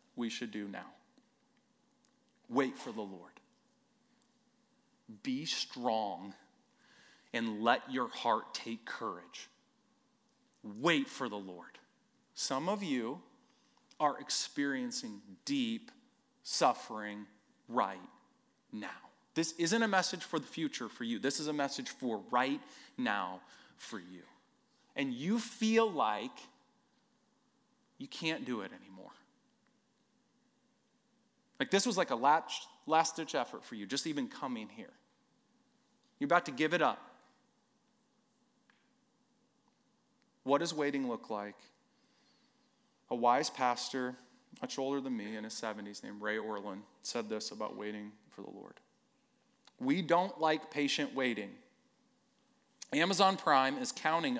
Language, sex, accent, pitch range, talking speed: English, male, American, 160-255 Hz, 120 wpm